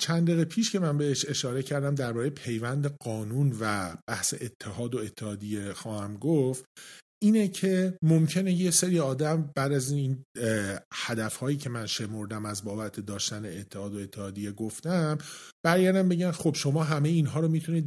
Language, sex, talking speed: Persian, male, 155 wpm